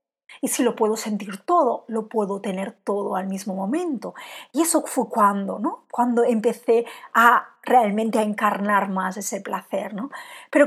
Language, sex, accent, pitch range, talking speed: Spanish, female, Spanish, 205-285 Hz, 165 wpm